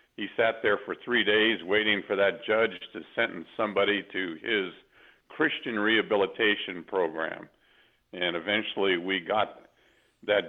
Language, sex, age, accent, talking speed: English, male, 50-69, American, 130 wpm